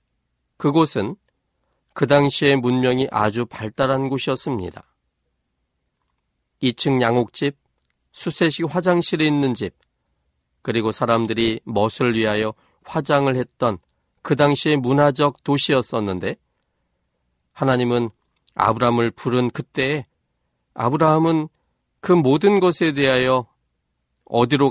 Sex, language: male, Korean